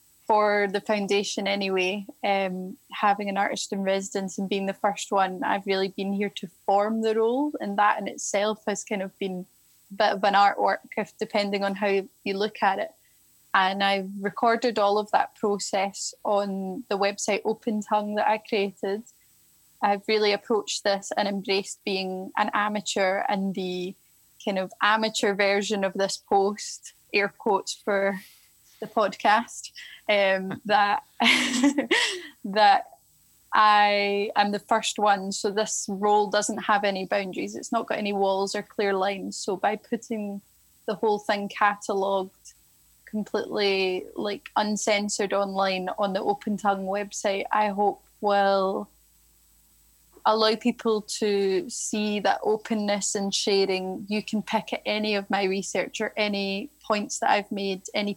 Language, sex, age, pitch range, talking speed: English, female, 10-29, 195-215 Hz, 150 wpm